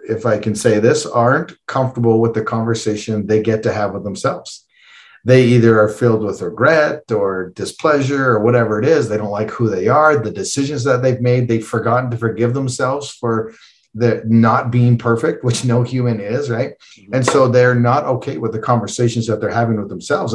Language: English